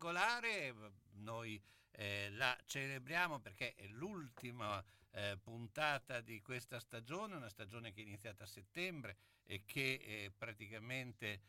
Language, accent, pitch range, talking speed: Italian, native, 100-125 Hz, 120 wpm